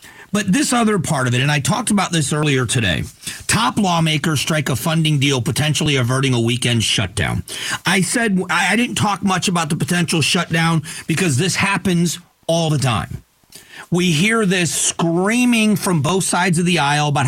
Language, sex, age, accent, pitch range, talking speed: English, male, 40-59, American, 130-175 Hz, 175 wpm